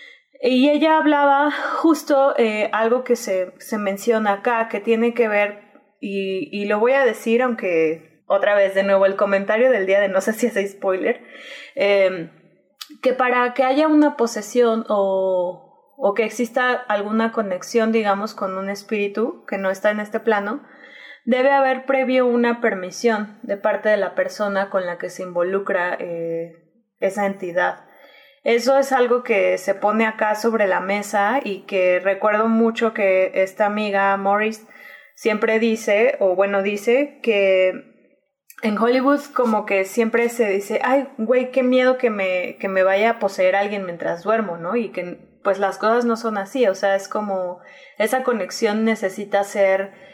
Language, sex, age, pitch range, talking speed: Spanish, female, 20-39, 195-245 Hz, 165 wpm